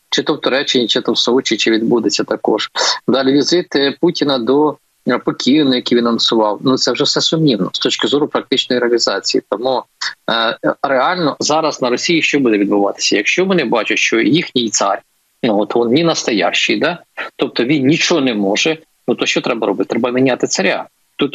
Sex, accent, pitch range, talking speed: male, native, 125-155 Hz, 180 wpm